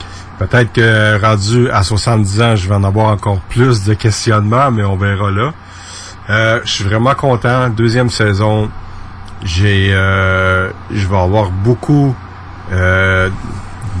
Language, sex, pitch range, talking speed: French, male, 95-110 Hz, 135 wpm